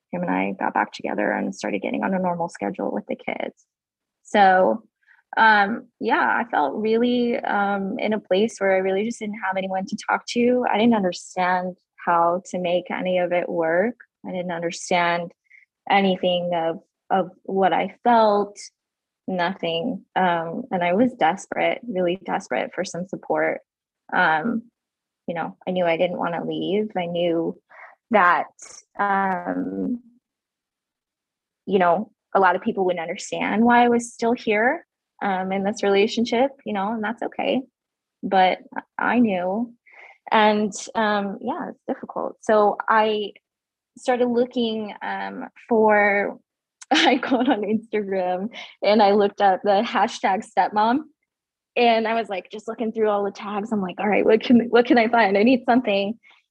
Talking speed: 160 wpm